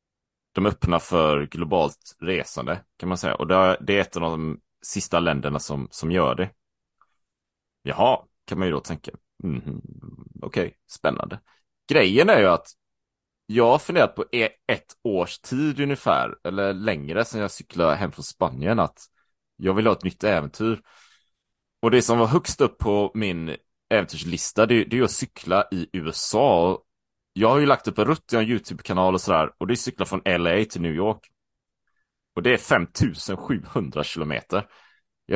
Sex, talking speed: male, 170 wpm